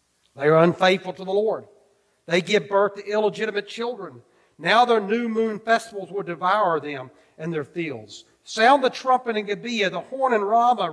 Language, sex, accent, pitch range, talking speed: English, male, American, 150-215 Hz, 175 wpm